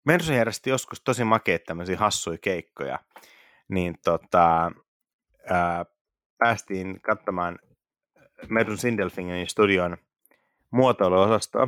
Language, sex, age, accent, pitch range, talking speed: Finnish, male, 30-49, native, 85-100 Hz, 85 wpm